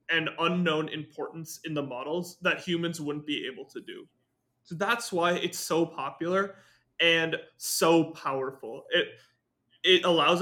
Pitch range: 150-180 Hz